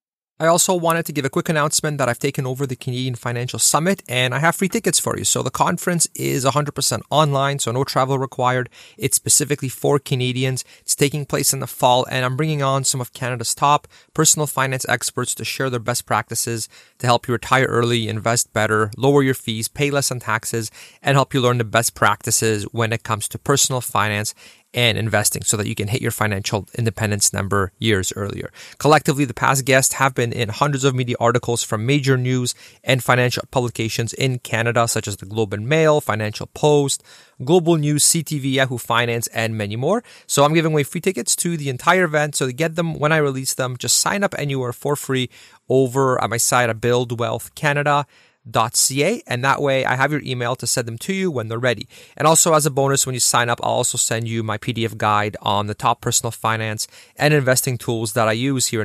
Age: 30-49